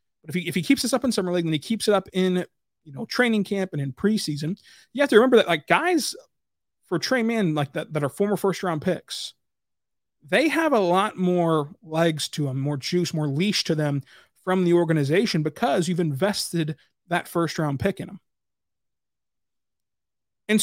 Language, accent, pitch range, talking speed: English, American, 150-195 Hz, 200 wpm